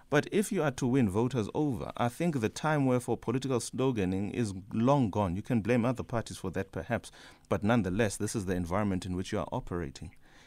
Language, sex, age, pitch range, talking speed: English, male, 30-49, 95-125 Hz, 220 wpm